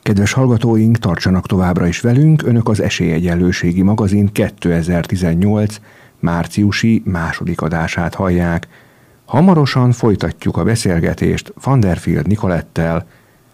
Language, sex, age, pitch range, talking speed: Hungarian, male, 50-69, 85-110 Hz, 95 wpm